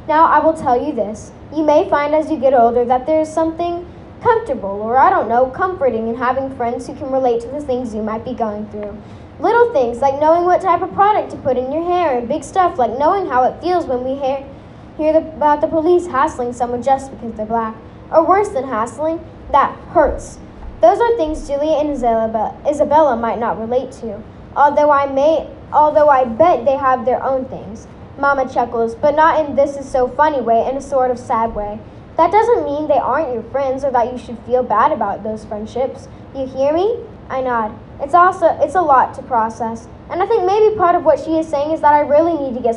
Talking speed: 215 wpm